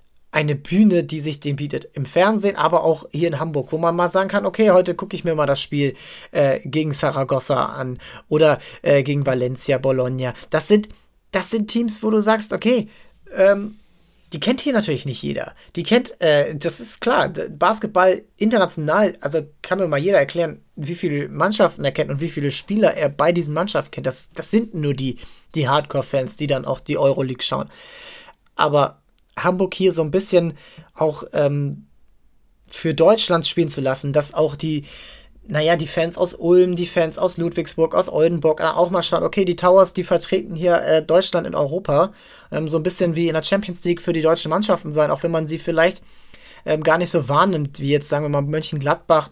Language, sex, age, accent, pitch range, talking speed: German, male, 30-49, German, 145-185 Hz, 195 wpm